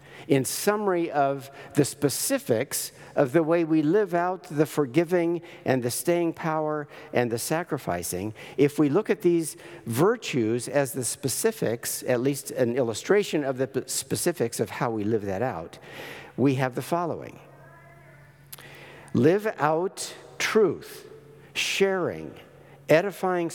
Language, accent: English, American